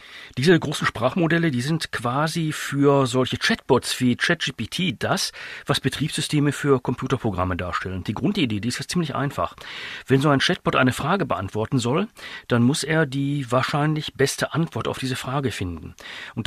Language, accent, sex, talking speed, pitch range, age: German, German, male, 160 wpm, 120-145 Hz, 40-59